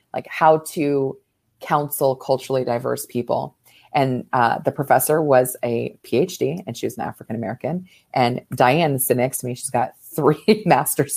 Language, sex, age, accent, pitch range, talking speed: English, female, 30-49, American, 130-160 Hz, 155 wpm